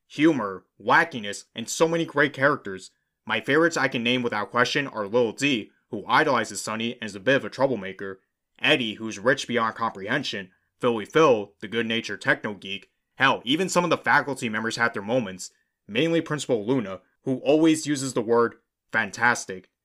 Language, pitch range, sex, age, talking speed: English, 110-145 Hz, male, 20-39, 170 wpm